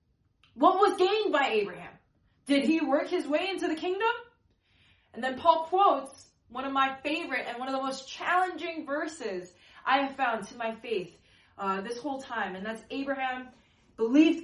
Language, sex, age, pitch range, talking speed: English, female, 20-39, 225-315 Hz, 175 wpm